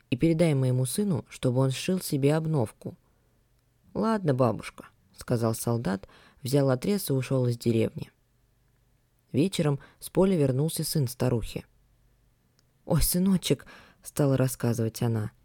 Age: 20-39